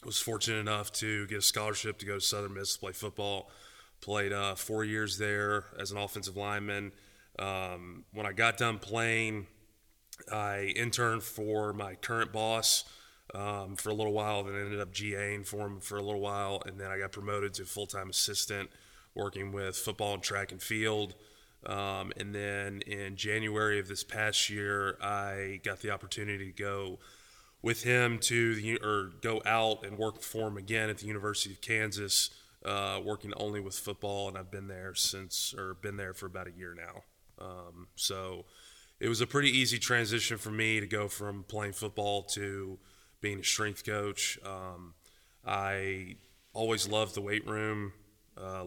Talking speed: 180 wpm